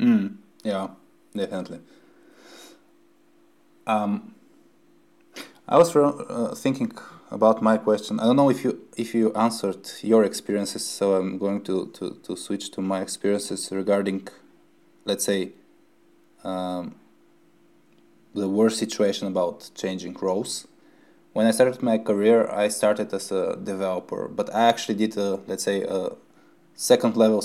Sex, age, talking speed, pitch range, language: male, 20-39, 135 wpm, 100-125 Hz, Bulgarian